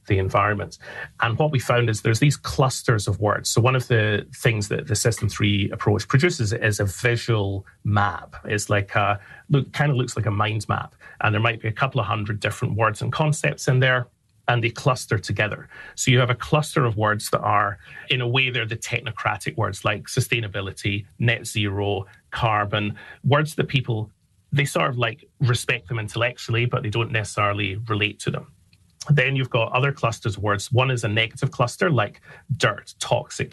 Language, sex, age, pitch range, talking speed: English, male, 30-49, 105-125 Hz, 195 wpm